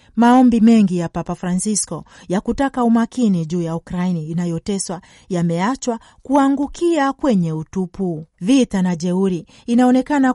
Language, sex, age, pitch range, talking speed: Swahili, female, 40-59, 180-245 Hz, 115 wpm